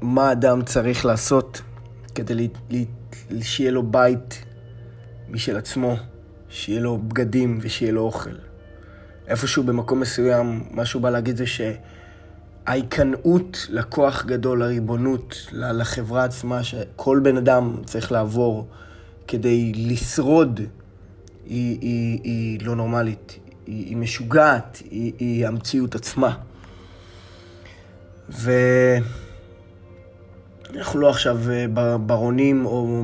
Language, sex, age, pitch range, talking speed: Hebrew, male, 20-39, 105-125 Hz, 100 wpm